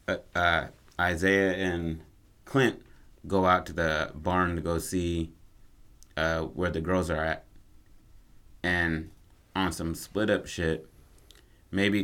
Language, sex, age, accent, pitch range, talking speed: English, male, 30-49, American, 85-100 Hz, 130 wpm